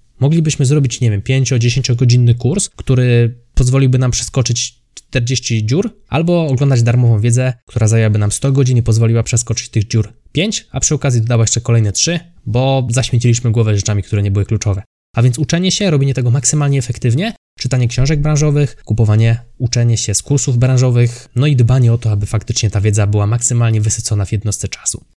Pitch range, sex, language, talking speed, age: 110-130 Hz, male, Polish, 180 wpm, 20-39